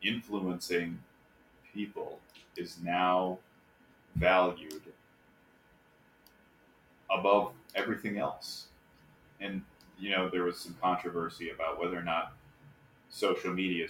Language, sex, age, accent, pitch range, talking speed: English, male, 30-49, American, 80-95 Hz, 90 wpm